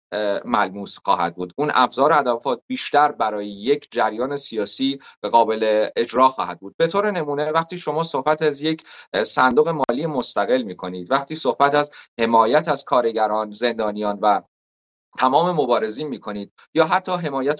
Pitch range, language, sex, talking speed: 115-160 Hz, English, male, 150 wpm